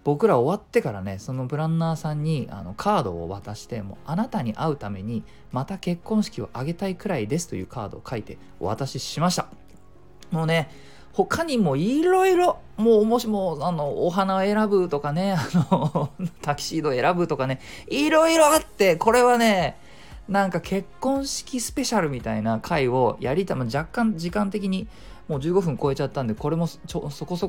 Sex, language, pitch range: male, Japanese, 120-195 Hz